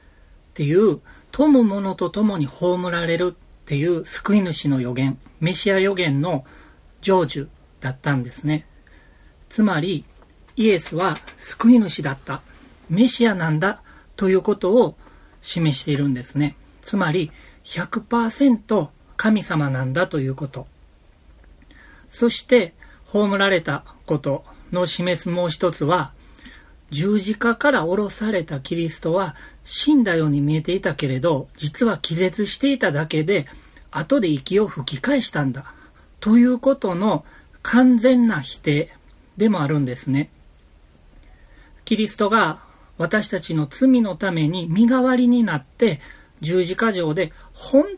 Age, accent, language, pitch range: 40-59, native, Japanese, 145-220 Hz